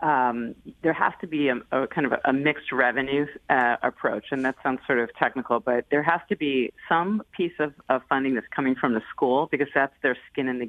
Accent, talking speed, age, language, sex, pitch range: American, 230 wpm, 30-49, English, female, 135-165 Hz